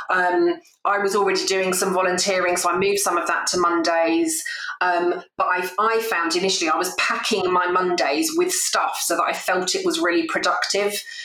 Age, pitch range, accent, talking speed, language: 30-49, 180-255 Hz, British, 190 wpm, English